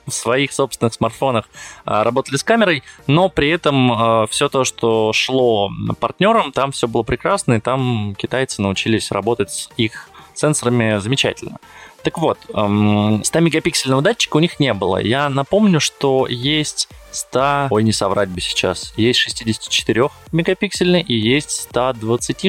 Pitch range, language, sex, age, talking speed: 110-145 Hz, Russian, male, 20-39, 135 wpm